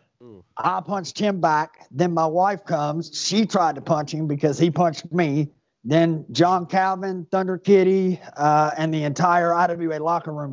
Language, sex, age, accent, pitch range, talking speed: English, male, 30-49, American, 150-175 Hz, 165 wpm